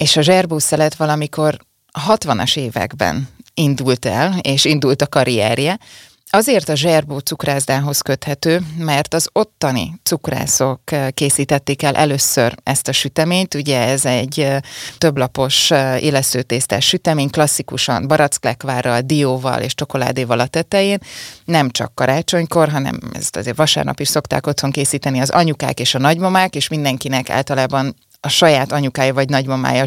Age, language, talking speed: 30-49, Hungarian, 130 wpm